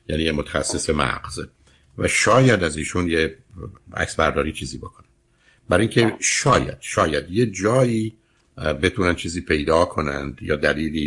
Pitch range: 75-90 Hz